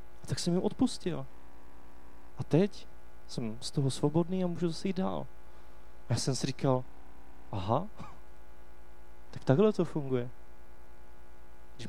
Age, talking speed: 30-49, 135 wpm